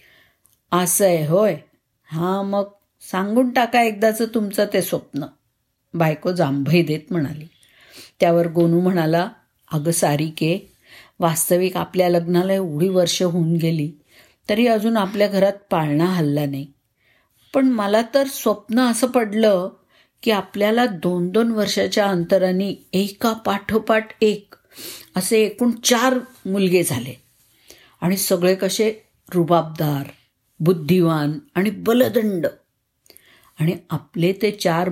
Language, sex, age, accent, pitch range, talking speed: Marathi, female, 50-69, native, 170-205 Hz, 110 wpm